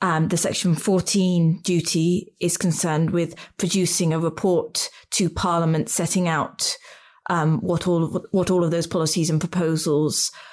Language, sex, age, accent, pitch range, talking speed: English, female, 30-49, British, 165-195 Hz, 150 wpm